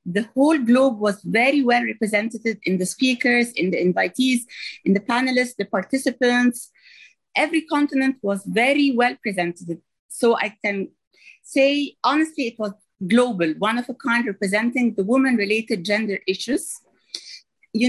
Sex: female